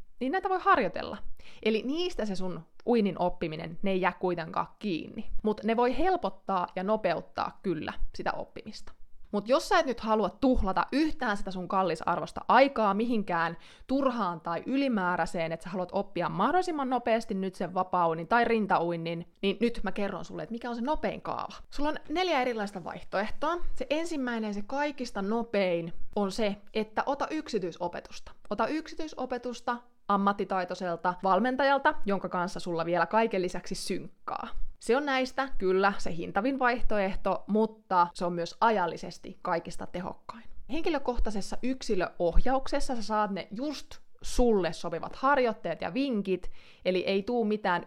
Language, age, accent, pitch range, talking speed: Finnish, 20-39, native, 180-245 Hz, 150 wpm